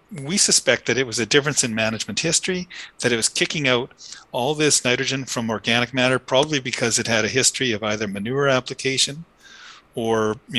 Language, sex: English, male